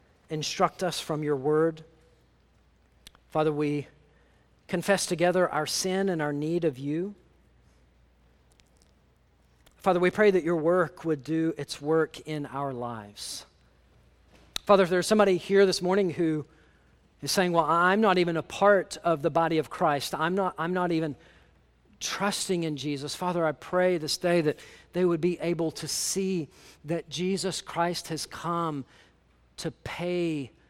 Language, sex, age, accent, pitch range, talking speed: English, male, 40-59, American, 120-175 Hz, 150 wpm